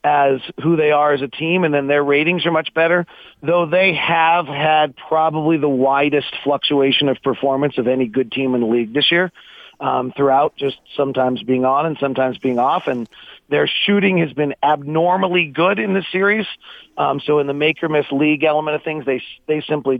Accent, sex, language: American, male, English